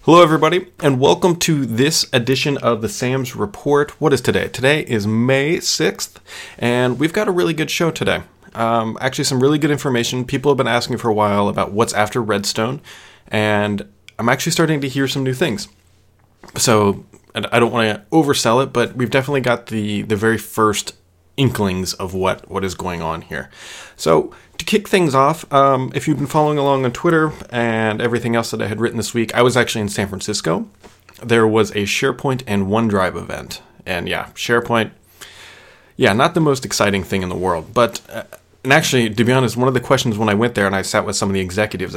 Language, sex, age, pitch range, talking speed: English, male, 30-49, 105-140 Hz, 205 wpm